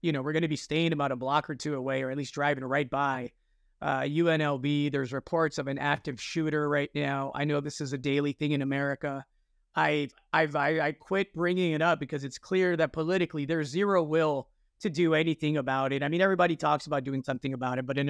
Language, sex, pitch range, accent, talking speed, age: English, male, 140-170 Hz, American, 230 wpm, 30-49